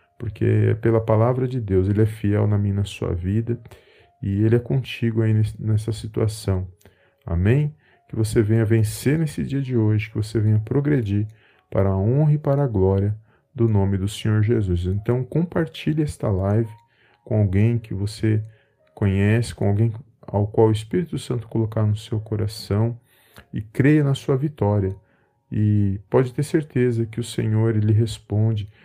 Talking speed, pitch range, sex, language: 170 wpm, 105-120 Hz, male, Portuguese